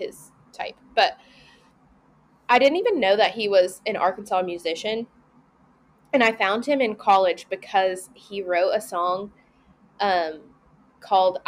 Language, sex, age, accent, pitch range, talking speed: English, female, 20-39, American, 180-225 Hz, 135 wpm